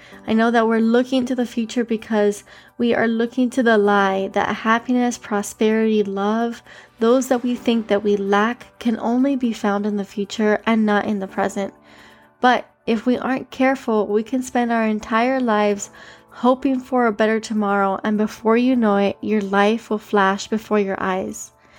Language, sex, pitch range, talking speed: English, female, 210-245 Hz, 180 wpm